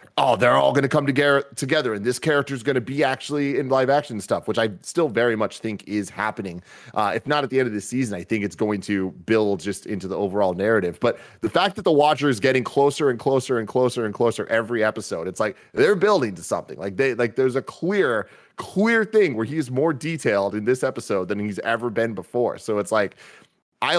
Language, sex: English, male